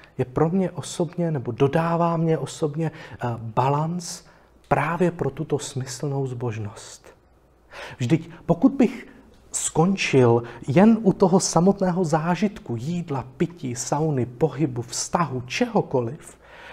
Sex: male